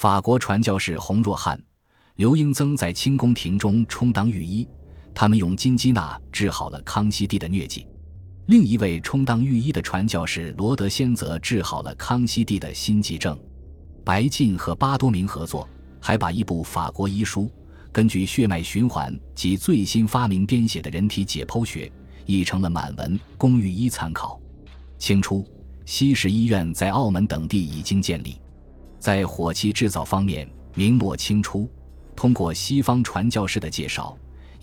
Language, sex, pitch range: Chinese, male, 80-110 Hz